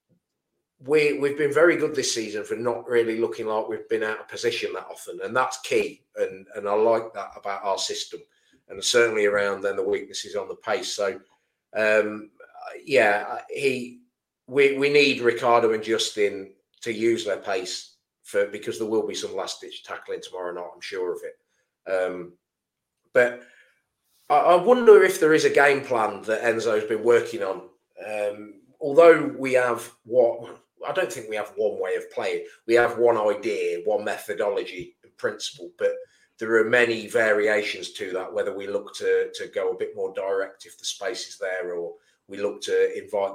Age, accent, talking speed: 30-49, British, 185 wpm